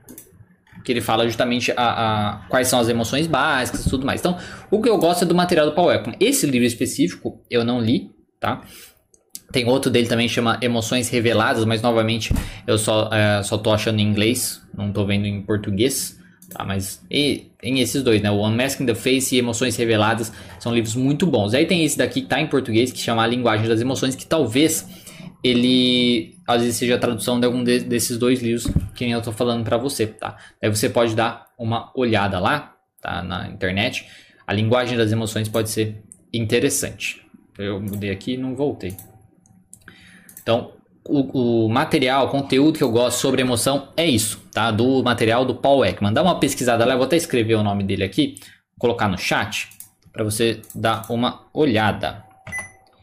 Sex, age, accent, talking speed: male, 20-39, Brazilian, 190 wpm